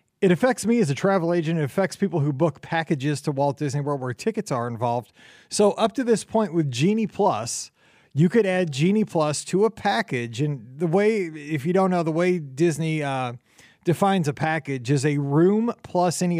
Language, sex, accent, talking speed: English, male, American, 205 wpm